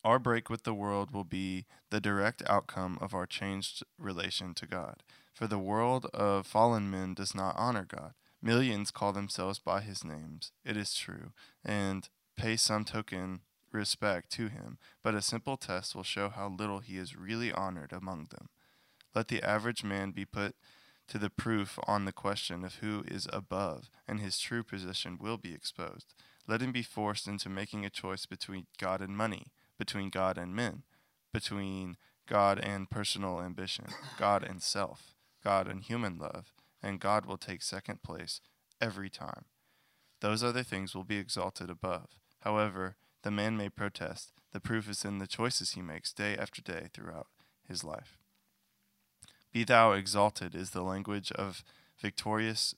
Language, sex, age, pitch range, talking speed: English, male, 20-39, 95-110 Hz, 170 wpm